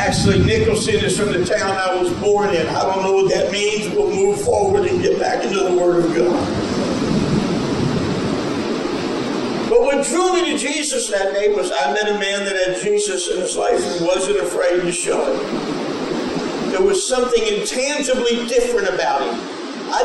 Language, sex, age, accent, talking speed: English, male, 50-69, American, 180 wpm